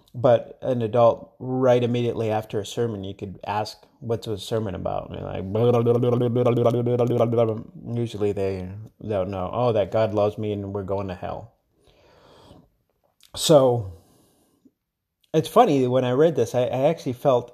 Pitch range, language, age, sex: 105-125 Hz, English, 30-49, male